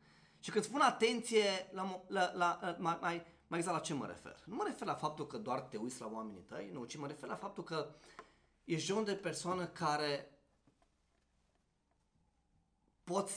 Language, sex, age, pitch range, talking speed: Romanian, male, 30-49, 110-165 Hz, 180 wpm